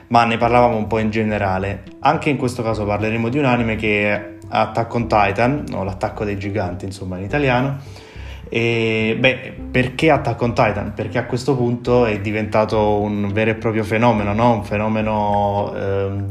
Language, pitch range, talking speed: Italian, 100-120 Hz, 175 wpm